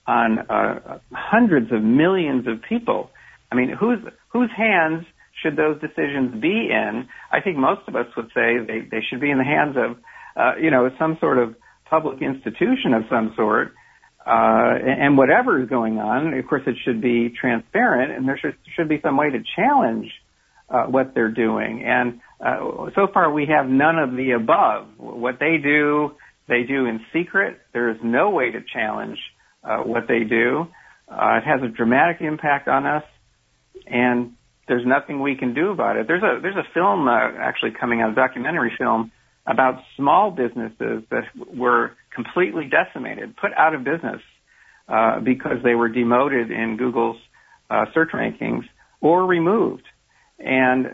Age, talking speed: 50-69, 175 wpm